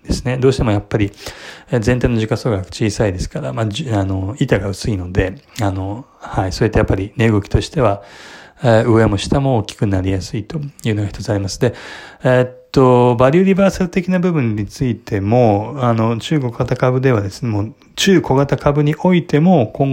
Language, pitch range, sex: Japanese, 105-135 Hz, male